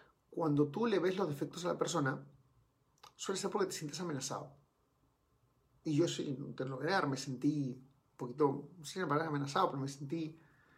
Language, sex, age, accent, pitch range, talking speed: Spanish, male, 40-59, Mexican, 130-165 Hz, 160 wpm